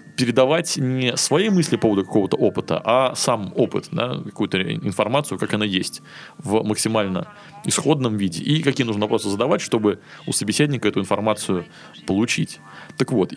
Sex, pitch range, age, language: male, 105-135 Hz, 20-39, Russian